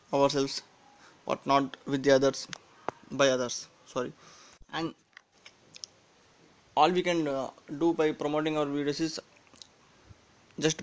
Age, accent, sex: 20-39, Indian, male